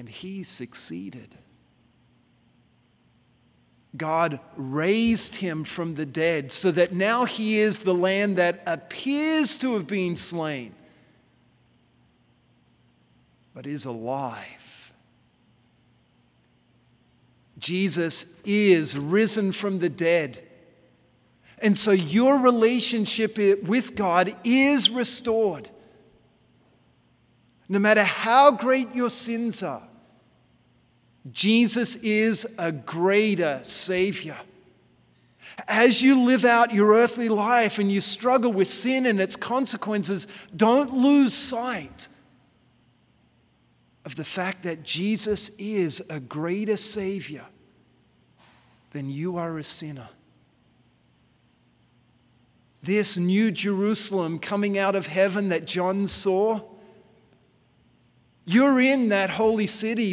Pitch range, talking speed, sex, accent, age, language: 160-220 Hz, 100 wpm, male, American, 40-59, English